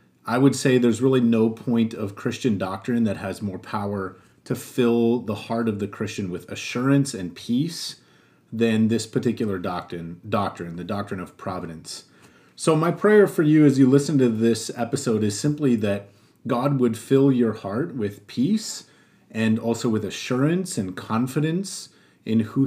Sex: male